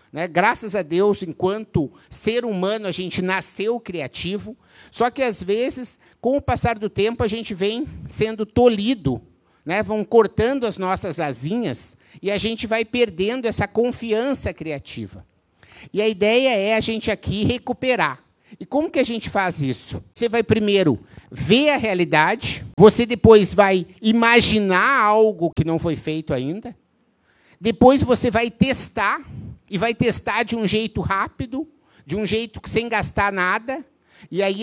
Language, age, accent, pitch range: Portuguese, 50-69, Brazilian, 185-235 Hz